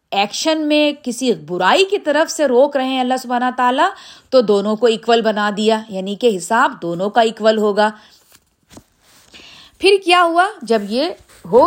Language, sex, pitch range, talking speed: Urdu, female, 200-260 Hz, 165 wpm